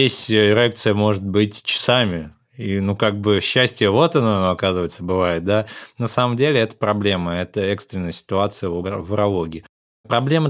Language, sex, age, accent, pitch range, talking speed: Russian, male, 20-39, native, 95-115 Hz, 145 wpm